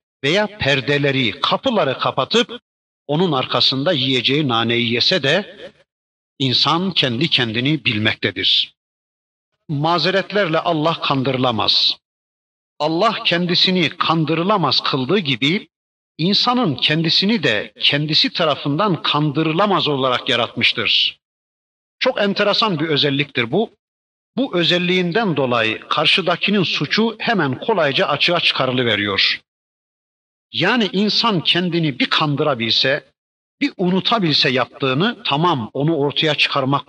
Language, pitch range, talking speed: Turkish, 130-180 Hz, 90 wpm